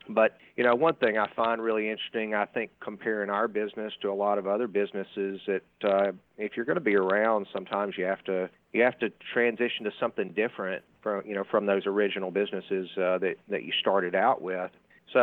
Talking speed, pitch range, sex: 215 wpm, 100-115 Hz, male